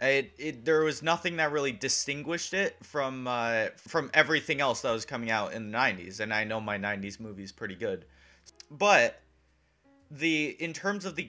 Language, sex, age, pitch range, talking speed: English, male, 30-49, 115-160 Hz, 185 wpm